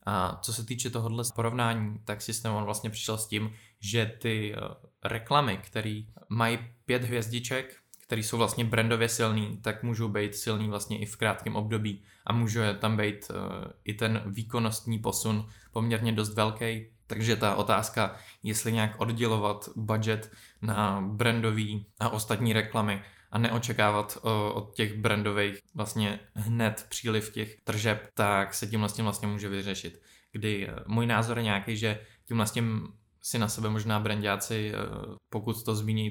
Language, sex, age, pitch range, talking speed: Czech, male, 20-39, 105-115 Hz, 150 wpm